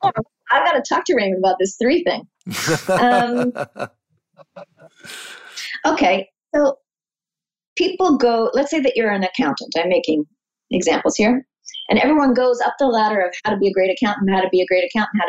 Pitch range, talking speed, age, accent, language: 190-265 Hz, 175 wpm, 40-59, American, English